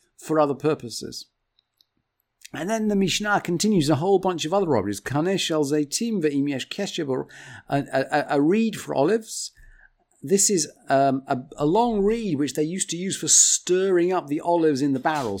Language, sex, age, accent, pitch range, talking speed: English, male, 50-69, British, 140-175 Hz, 160 wpm